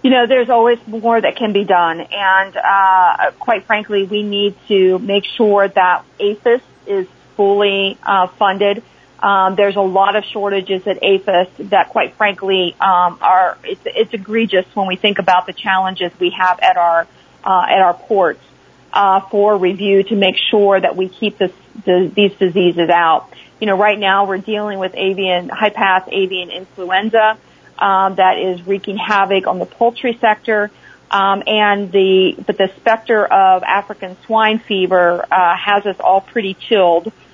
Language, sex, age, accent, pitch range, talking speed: English, female, 40-59, American, 185-210 Hz, 165 wpm